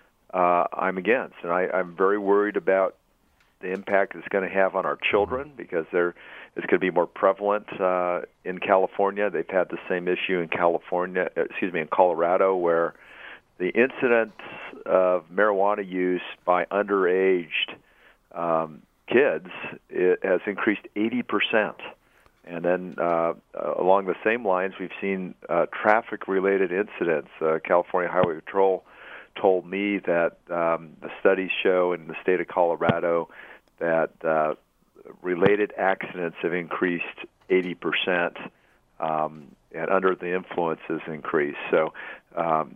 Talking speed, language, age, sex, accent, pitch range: 140 wpm, English, 50-69, male, American, 85-95 Hz